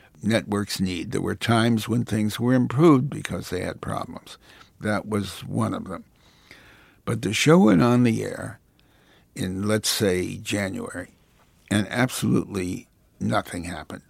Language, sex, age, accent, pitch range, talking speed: English, male, 60-79, American, 95-115 Hz, 140 wpm